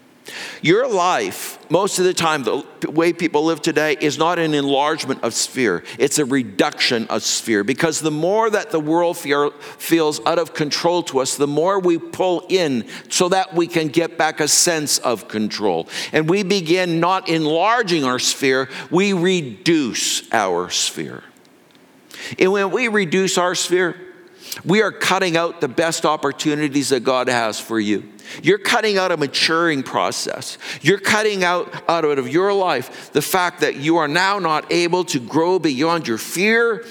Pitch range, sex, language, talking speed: 140-185 Hz, male, English, 170 wpm